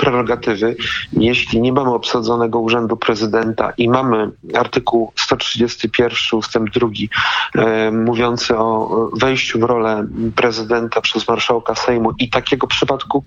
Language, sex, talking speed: Polish, male, 115 wpm